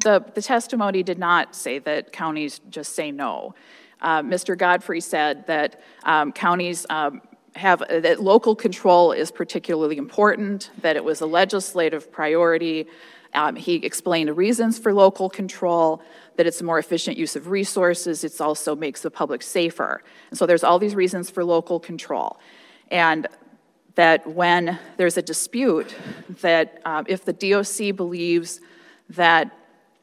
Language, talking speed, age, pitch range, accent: English, 150 wpm, 30-49, 165-195 Hz, American